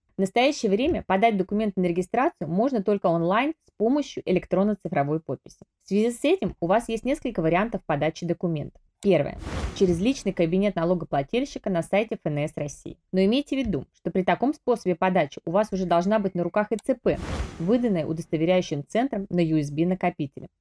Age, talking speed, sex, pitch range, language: 20-39, 165 wpm, female, 170-225 Hz, Russian